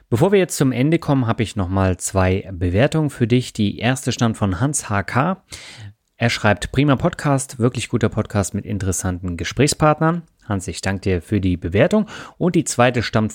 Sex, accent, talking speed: male, German, 180 wpm